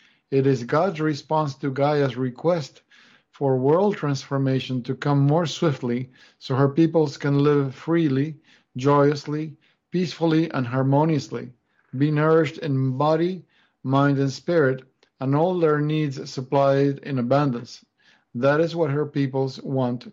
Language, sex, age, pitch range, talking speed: English, male, 50-69, 135-155 Hz, 130 wpm